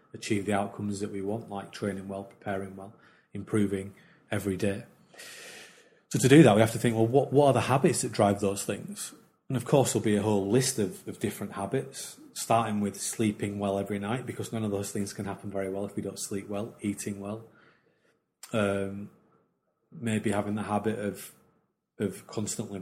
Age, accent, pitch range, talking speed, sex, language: 30-49, British, 100-115 Hz, 195 wpm, male, English